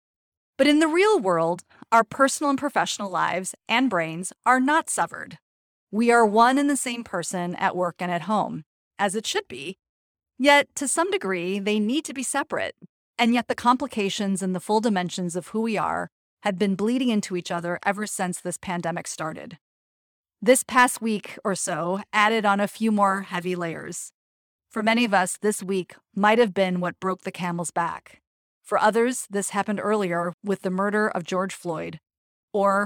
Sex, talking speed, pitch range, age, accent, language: female, 185 wpm, 180-230 Hz, 30-49, American, English